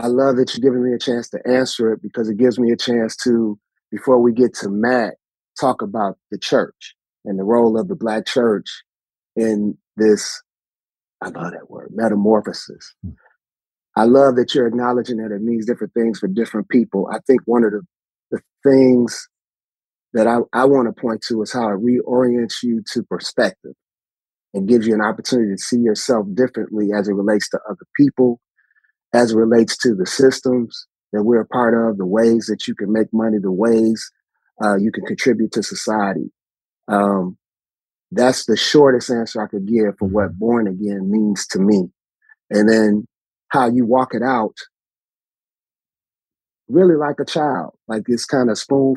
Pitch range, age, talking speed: 105-125 Hz, 30-49, 180 wpm